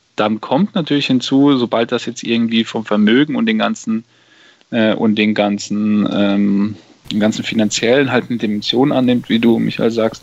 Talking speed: 170 wpm